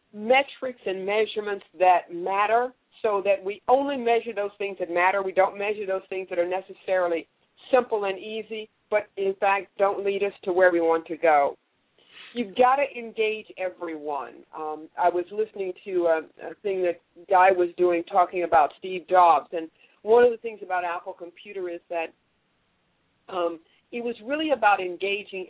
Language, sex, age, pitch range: English, female, 50-69, 180-235 Hz